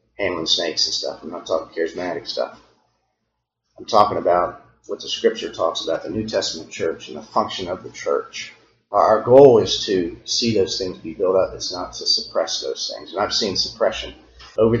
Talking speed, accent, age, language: 195 wpm, American, 40-59, English